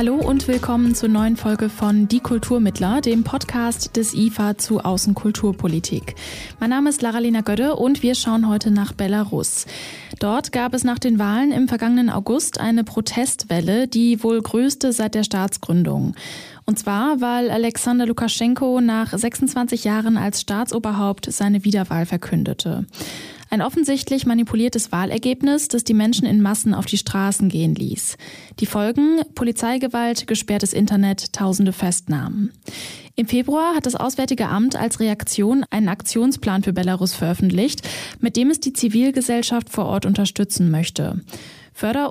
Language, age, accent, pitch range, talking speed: German, 10-29, German, 205-245 Hz, 145 wpm